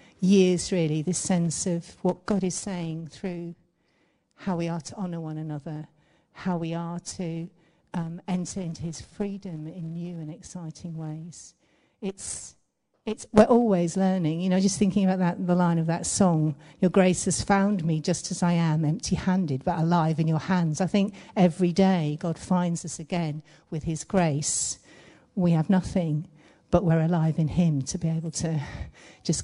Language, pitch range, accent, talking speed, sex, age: English, 160-185 Hz, British, 175 wpm, female, 50-69